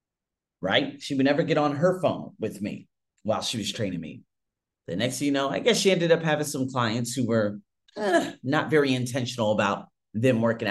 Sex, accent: male, American